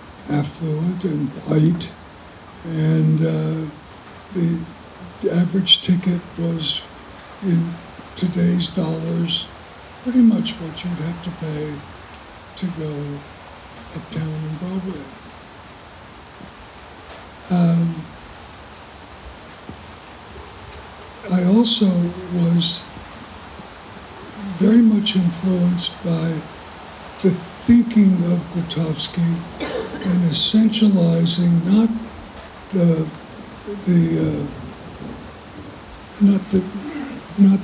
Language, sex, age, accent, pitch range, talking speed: English, male, 60-79, American, 155-185 Hz, 70 wpm